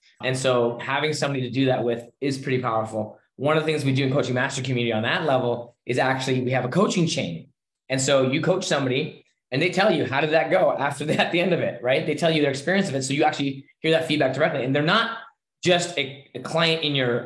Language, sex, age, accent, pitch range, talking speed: English, male, 20-39, American, 130-165 Hz, 260 wpm